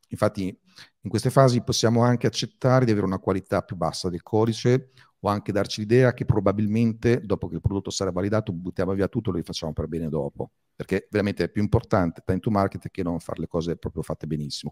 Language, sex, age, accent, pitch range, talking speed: Italian, male, 40-59, native, 85-105 Hz, 210 wpm